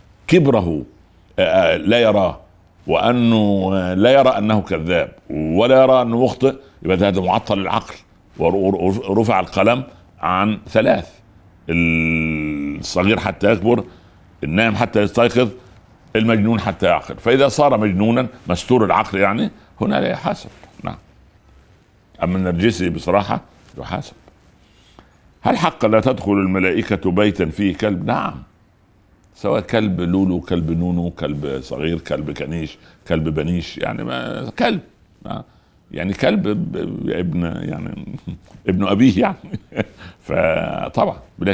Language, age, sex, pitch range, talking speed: Arabic, 60-79, male, 85-110 Hz, 115 wpm